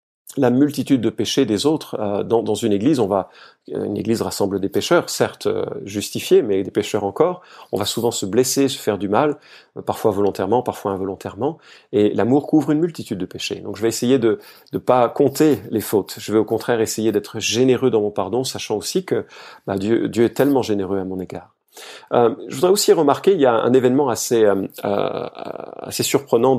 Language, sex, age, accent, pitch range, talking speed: French, male, 40-59, French, 100-125 Hz, 200 wpm